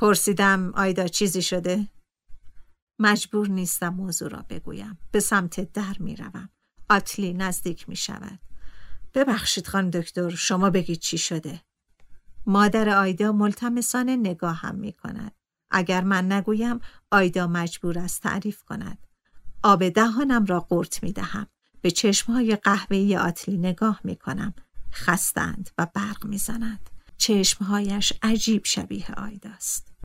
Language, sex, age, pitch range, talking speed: Persian, female, 50-69, 180-215 Hz, 120 wpm